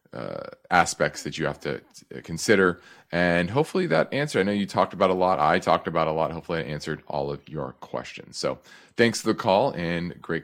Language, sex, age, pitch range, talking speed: English, male, 30-49, 85-120 Hz, 215 wpm